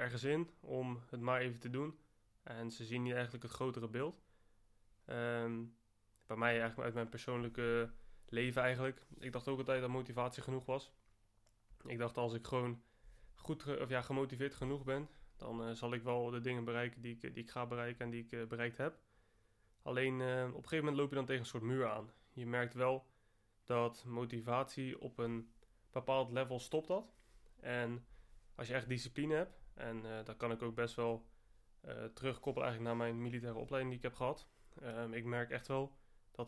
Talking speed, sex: 195 wpm, male